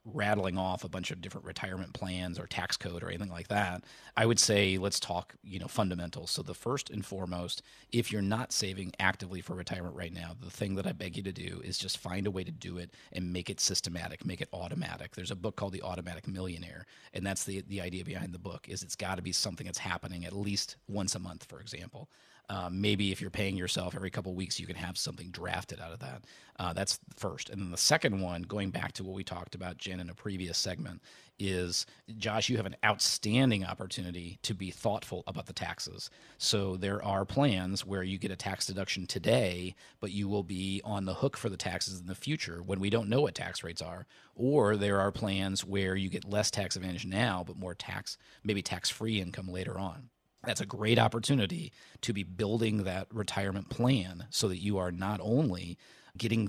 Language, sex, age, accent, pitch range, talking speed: English, male, 30-49, American, 90-105 Hz, 225 wpm